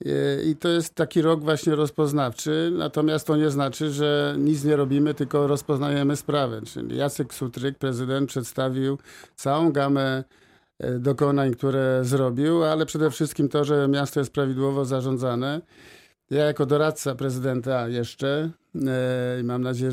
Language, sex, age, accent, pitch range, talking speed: Polish, male, 50-69, native, 130-145 Hz, 135 wpm